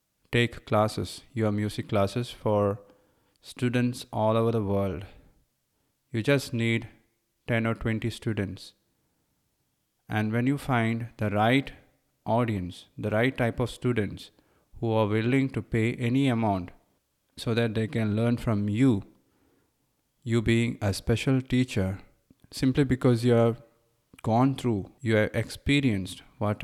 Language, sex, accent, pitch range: English, male, Indian, 105-120 Hz